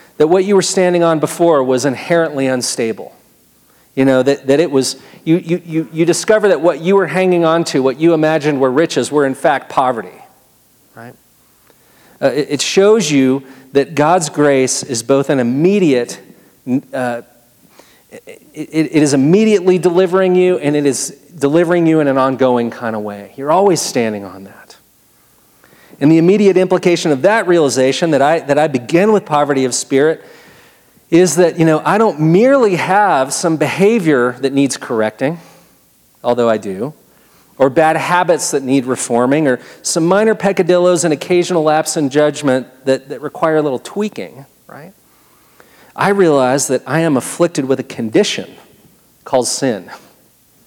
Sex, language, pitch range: male, English, 130-175 Hz